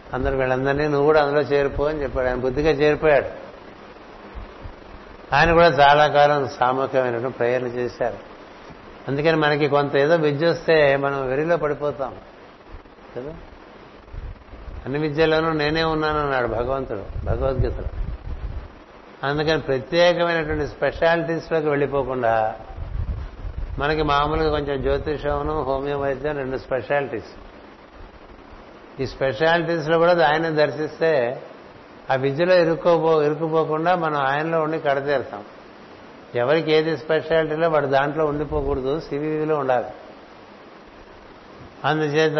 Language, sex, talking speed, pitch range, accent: Telugu, male, 90 wpm, 130-155 Hz, native